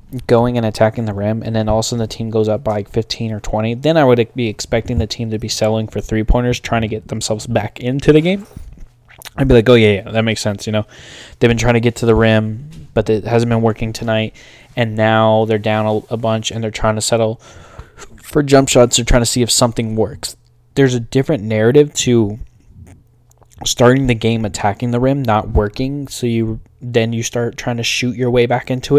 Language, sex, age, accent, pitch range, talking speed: English, male, 10-29, American, 110-125 Hz, 230 wpm